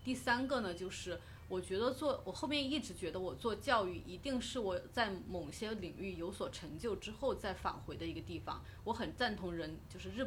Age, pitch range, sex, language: 30-49, 180-245 Hz, female, Chinese